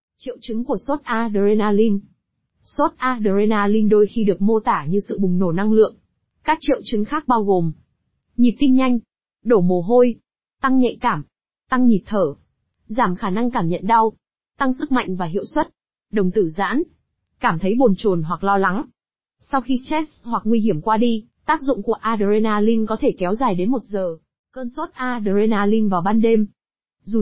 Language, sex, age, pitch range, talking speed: Vietnamese, female, 20-39, 200-250 Hz, 185 wpm